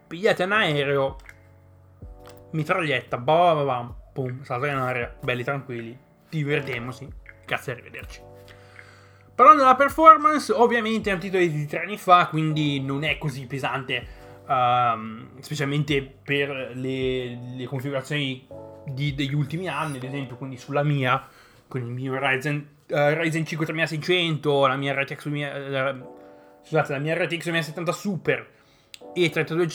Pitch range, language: 125-160 Hz, Italian